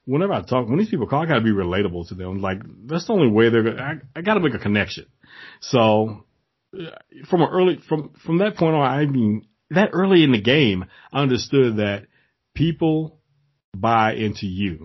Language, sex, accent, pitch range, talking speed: English, male, American, 105-155 Hz, 200 wpm